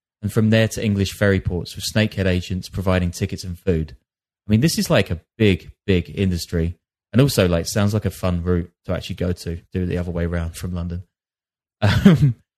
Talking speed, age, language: 210 wpm, 20-39, English